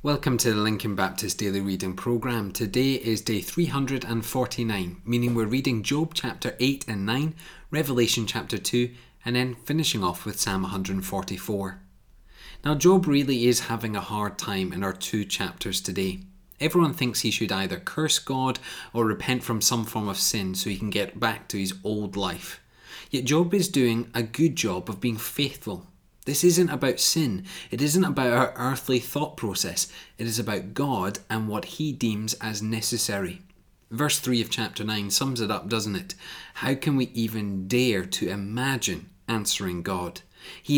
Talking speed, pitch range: 170 wpm, 100-130 Hz